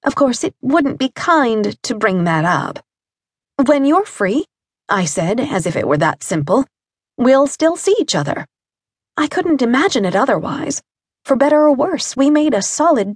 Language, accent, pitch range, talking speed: English, American, 190-295 Hz, 180 wpm